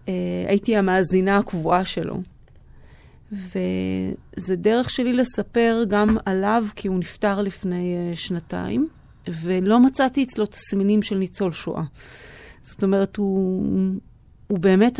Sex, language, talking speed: female, Hebrew, 110 wpm